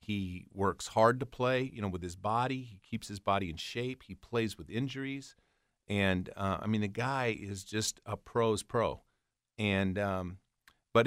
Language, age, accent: English, 40-59, American